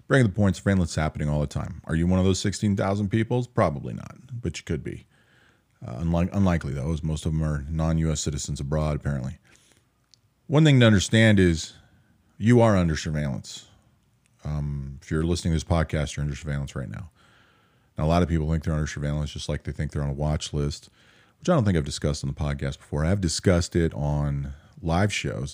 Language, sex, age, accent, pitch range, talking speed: English, male, 40-59, American, 75-100 Hz, 210 wpm